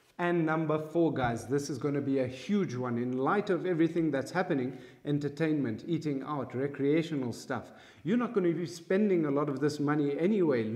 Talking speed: 195 wpm